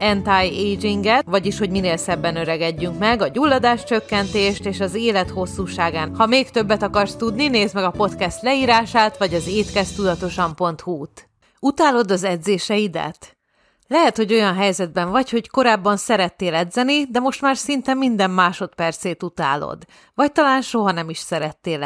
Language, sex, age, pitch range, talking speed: Hungarian, female, 30-49, 175-225 Hz, 150 wpm